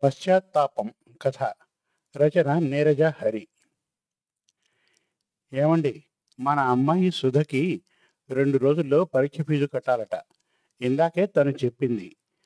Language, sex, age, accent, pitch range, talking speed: Telugu, male, 50-69, native, 135-165 Hz, 80 wpm